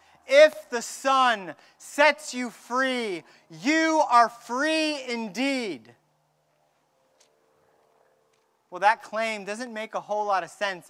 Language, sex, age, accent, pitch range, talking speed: English, male, 30-49, American, 165-250 Hz, 110 wpm